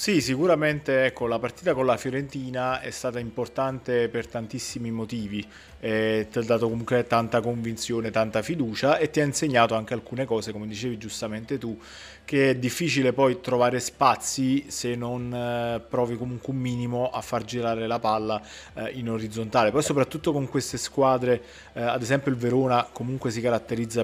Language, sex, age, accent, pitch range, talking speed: Italian, male, 30-49, native, 115-130 Hz, 165 wpm